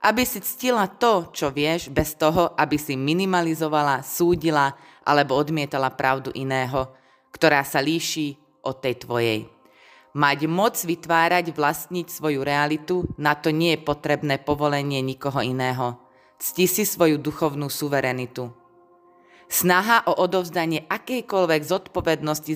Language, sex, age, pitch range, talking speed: Slovak, female, 20-39, 140-170 Hz, 120 wpm